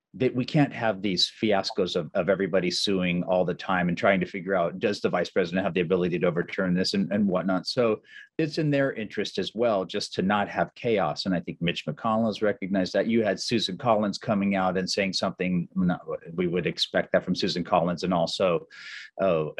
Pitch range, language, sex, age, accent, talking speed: 95-125 Hz, English, male, 40-59, American, 215 wpm